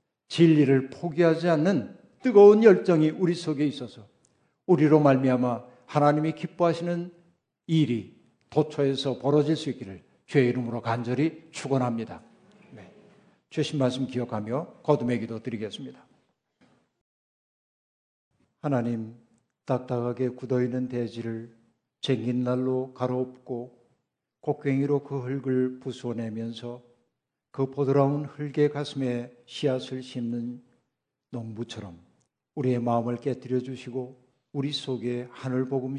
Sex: male